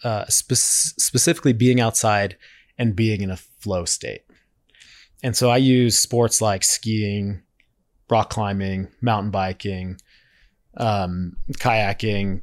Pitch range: 100-125 Hz